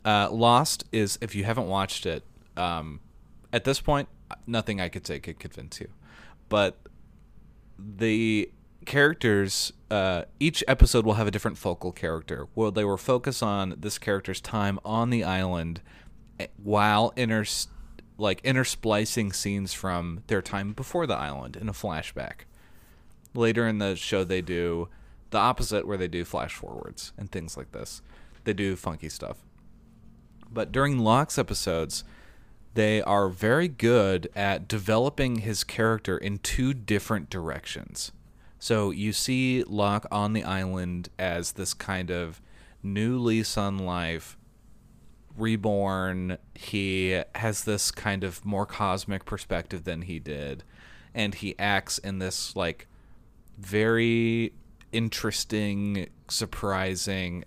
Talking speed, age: 135 wpm, 30-49